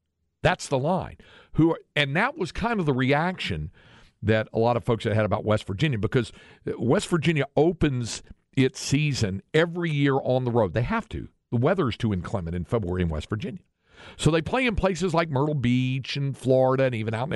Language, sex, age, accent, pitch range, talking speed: English, male, 50-69, American, 105-150 Hz, 205 wpm